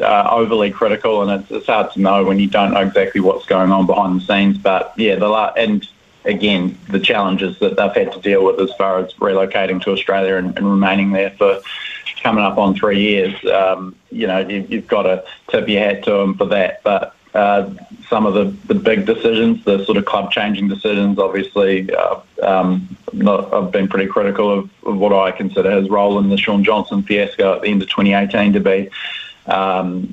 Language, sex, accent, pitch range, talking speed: English, male, Australian, 95-105 Hz, 210 wpm